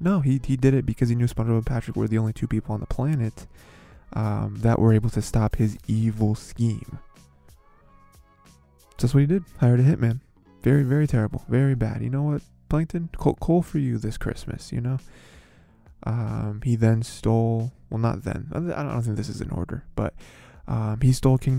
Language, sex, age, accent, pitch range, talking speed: English, male, 20-39, American, 110-130 Hz, 195 wpm